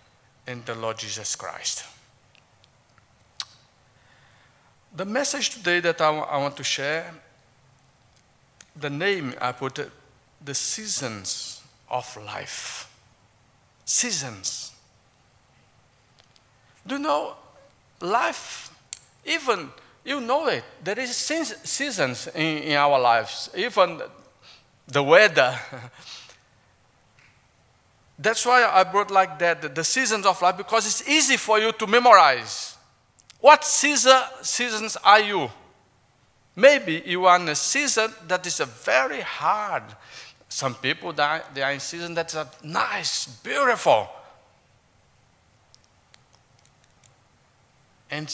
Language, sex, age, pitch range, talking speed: English, male, 50-69, 125-190 Hz, 105 wpm